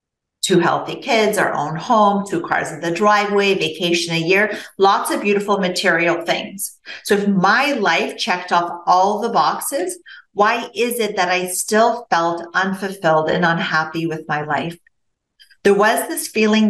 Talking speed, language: 160 wpm, English